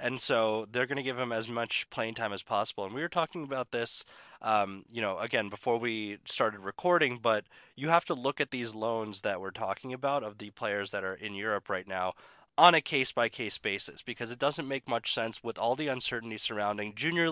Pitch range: 105-135 Hz